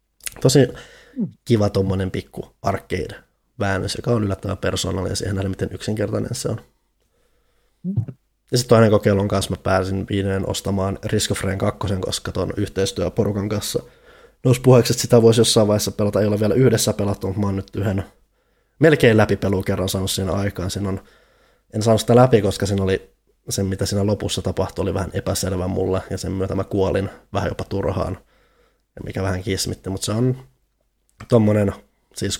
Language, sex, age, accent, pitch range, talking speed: Finnish, male, 20-39, native, 95-110 Hz, 155 wpm